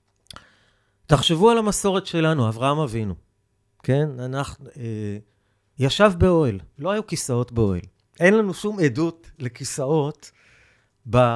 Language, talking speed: Hebrew, 110 wpm